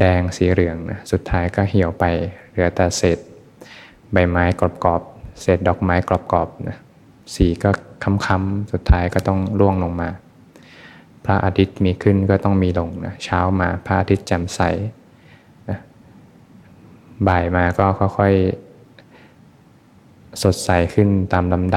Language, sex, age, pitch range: Thai, male, 20-39, 85-95 Hz